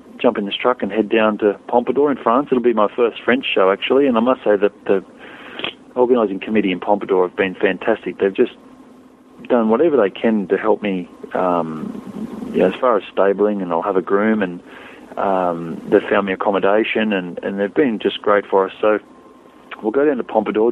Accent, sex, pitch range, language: Australian, male, 95-120 Hz, English